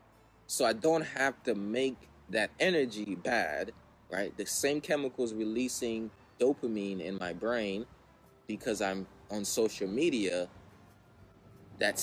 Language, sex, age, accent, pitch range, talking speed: English, male, 20-39, American, 100-130 Hz, 120 wpm